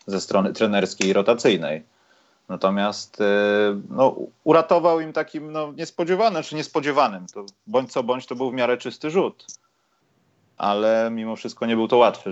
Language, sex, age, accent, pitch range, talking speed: Polish, male, 30-49, native, 100-125 Hz, 155 wpm